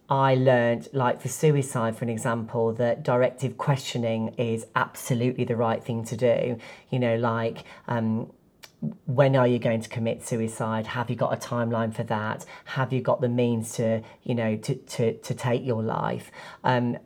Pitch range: 120-145 Hz